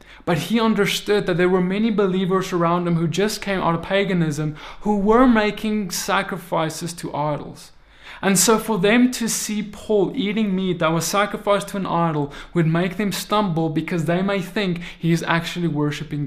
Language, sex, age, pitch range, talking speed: English, male, 20-39, 165-195 Hz, 180 wpm